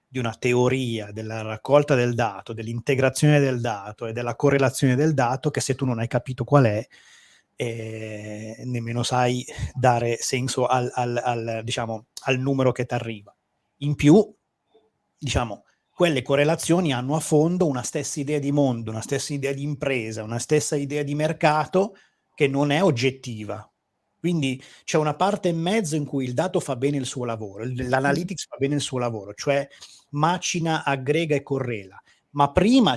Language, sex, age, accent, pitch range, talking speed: Italian, male, 30-49, native, 120-150 Hz, 165 wpm